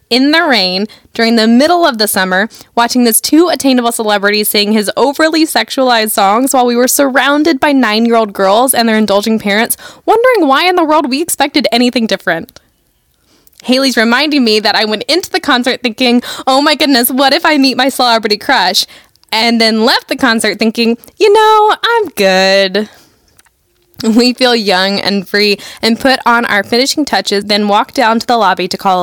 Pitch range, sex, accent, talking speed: 200-265 Hz, female, American, 180 wpm